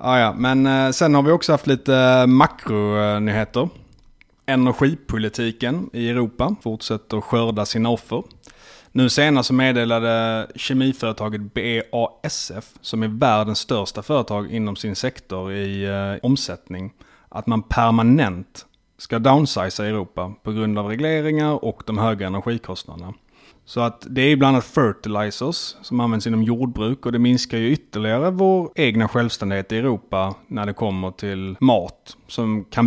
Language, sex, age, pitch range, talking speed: Swedish, male, 30-49, 105-125 Hz, 135 wpm